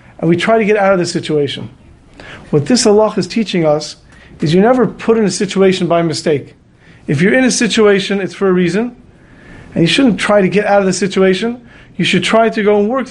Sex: male